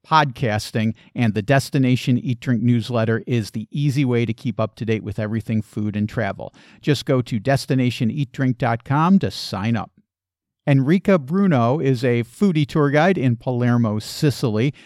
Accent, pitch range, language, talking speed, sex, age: American, 120-155 Hz, English, 155 wpm, male, 50-69